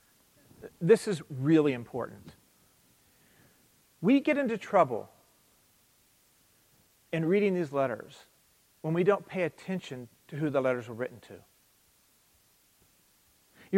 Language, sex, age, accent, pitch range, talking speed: English, male, 40-59, American, 170-250 Hz, 110 wpm